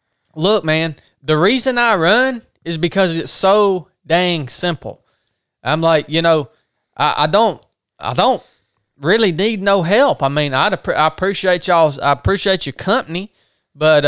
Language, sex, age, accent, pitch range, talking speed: English, male, 20-39, American, 135-170 Hz, 150 wpm